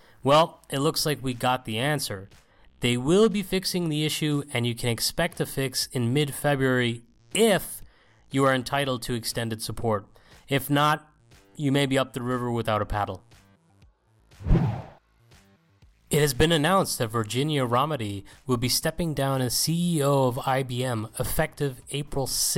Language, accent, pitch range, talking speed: English, American, 115-150 Hz, 150 wpm